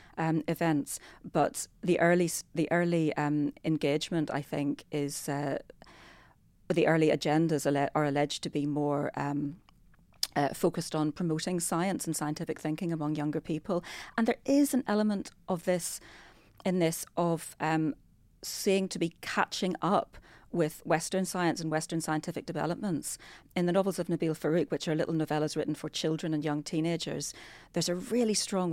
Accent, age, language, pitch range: British, 40-59, English, 150-170 Hz